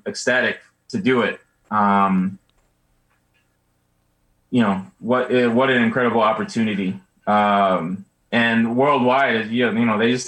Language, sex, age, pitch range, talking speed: English, male, 20-39, 95-115 Hz, 125 wpm